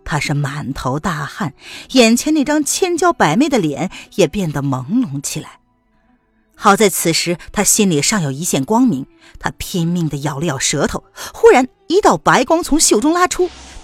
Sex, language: female, Chinese